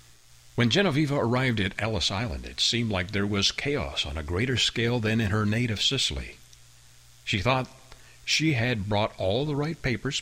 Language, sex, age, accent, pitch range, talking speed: English, male, 60-79, American, 80-120 Hz, 175 wpm